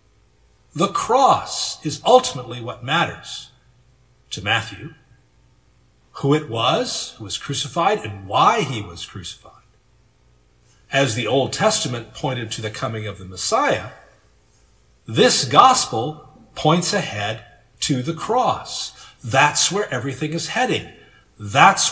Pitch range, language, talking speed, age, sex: 100-150 Hz, English, 120 wpm, 50-69, male